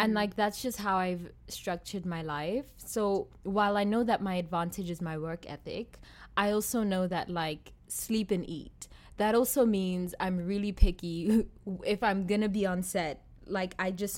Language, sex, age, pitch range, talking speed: English, female, 20-39, 170-215 Hz, 185 wpm